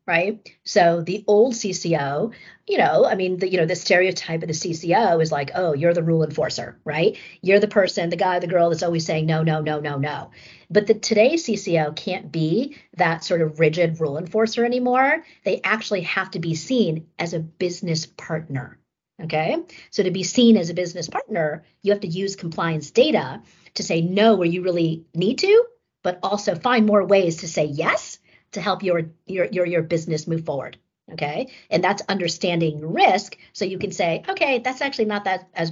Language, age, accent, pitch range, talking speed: English, 40-59, American, 165-205 Hz, 200 wpm